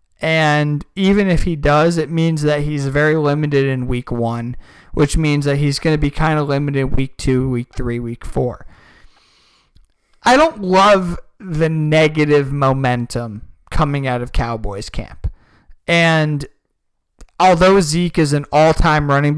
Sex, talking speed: male, 150 wpm